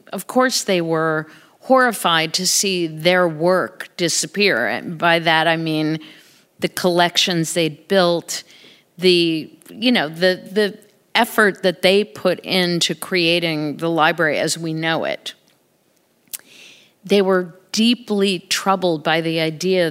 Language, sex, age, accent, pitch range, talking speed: English, female, 50-69, American, 165-200 Hz, 130 wpm